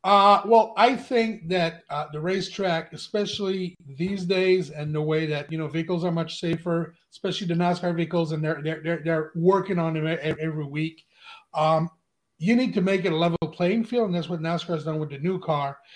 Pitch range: 160-200 Hz